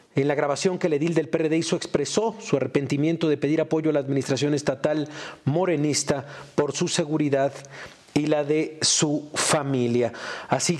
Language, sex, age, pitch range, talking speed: Spanish, male, 40-59, 135-170 Hz, 160 wpm